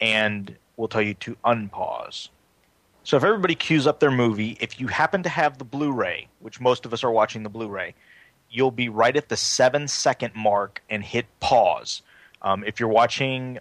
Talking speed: 185 wpm